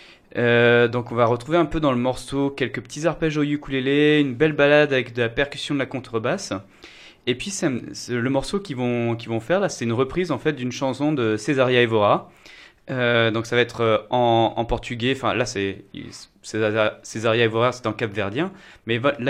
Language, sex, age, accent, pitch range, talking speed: French, male, 20-39, French, 115-140 Hz, 215 wpm